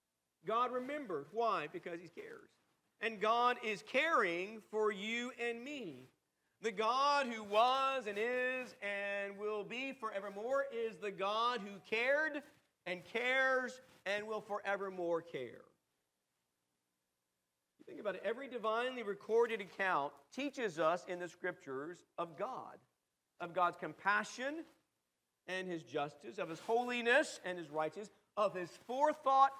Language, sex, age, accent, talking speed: English, male, 50-69, American, 130 wpm